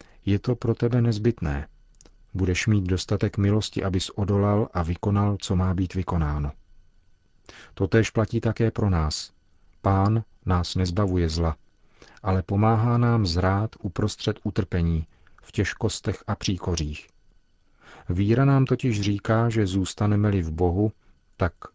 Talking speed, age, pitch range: 125 wpm, 40-59, 90-105 Hz